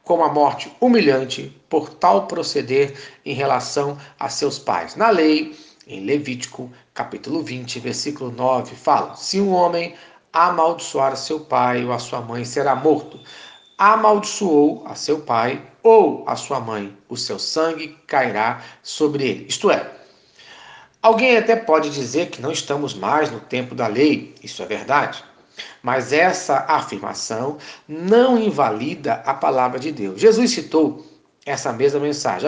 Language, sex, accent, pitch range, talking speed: Portuguese, male, Brazilian, 130-170 Hz, 145 wpm